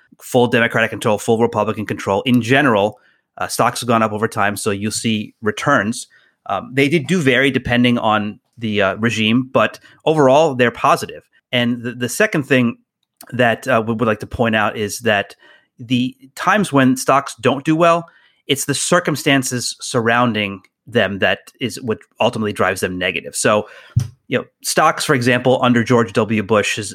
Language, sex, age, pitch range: English, male, 30-49, 110-130 Hz